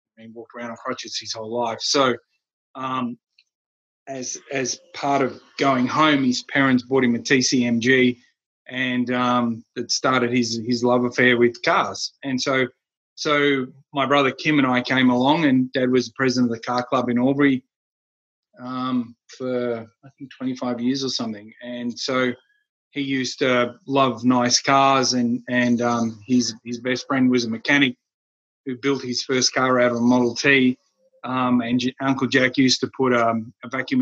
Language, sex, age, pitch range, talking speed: English, male, 30-49, 120-135 Hz, 175 wpm